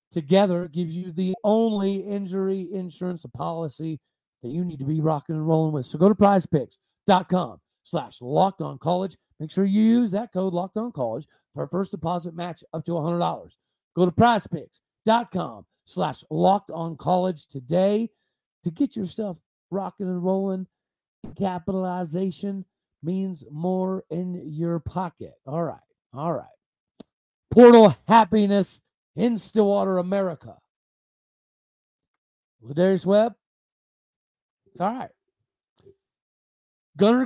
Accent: American